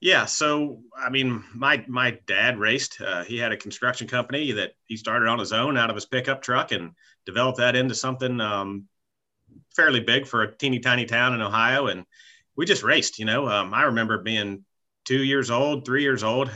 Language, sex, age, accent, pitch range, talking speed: English, male, 40-59, American, 105-130 Hz, 205 wpm